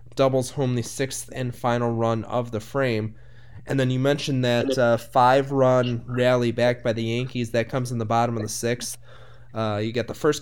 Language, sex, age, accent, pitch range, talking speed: English, male, 20-39, American, 120-135 Hz, 200 wpm